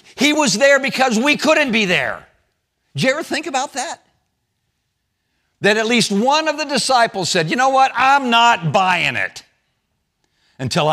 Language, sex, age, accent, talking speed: English, male, 60-79, American, 165 wpm